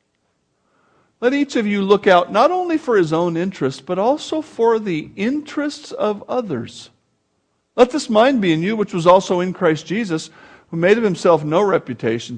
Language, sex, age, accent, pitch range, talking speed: English, male, 50-69, American, 160-220 Hz, 180 wpm